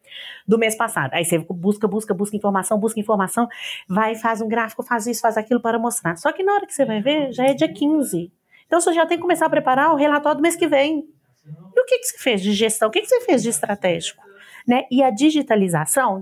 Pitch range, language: 195-275 Hz, Portuguese